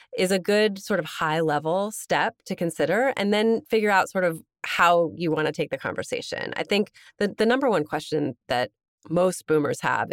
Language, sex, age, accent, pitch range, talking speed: English, female, 30-49, American, 160-205 Hz, 195 wpm